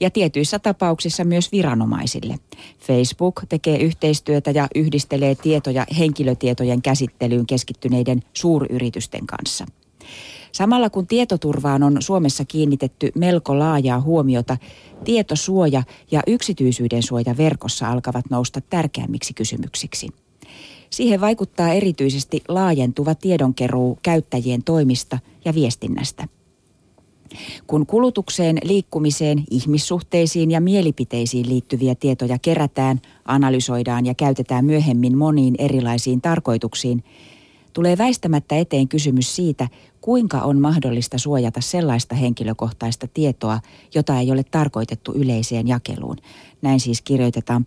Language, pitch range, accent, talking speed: Finnish, 125-160 Hz, native, 100 wpm